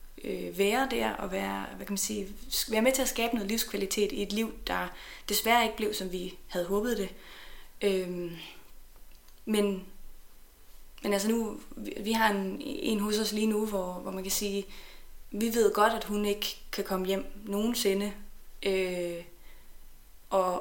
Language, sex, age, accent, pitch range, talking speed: Danish, female, 20-39, native, 195-225 Hz, 160 wpm